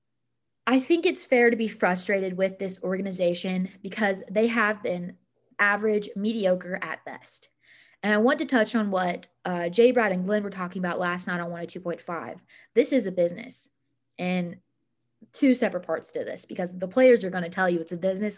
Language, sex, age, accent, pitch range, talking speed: English, female, 20-39, American, 185-230 Hz, 190 wpm